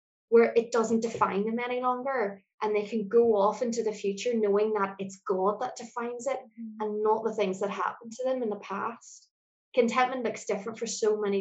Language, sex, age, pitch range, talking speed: English, female, 20-39, 200-235 Hz, 205 wpm